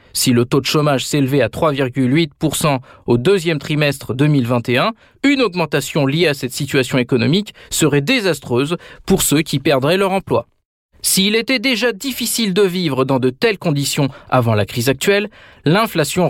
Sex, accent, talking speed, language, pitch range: male, French, 155 wpm, French, 130-175 Hz